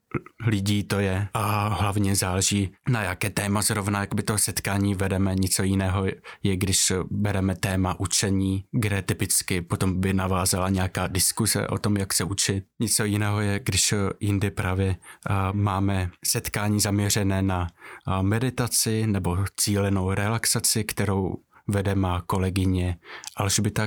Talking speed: 135 wpm